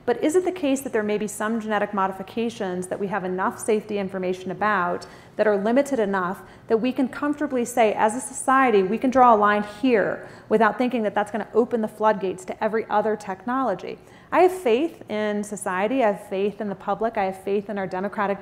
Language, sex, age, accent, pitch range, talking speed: English, female, 30-49, American, 200-245 Hz, 220 wpm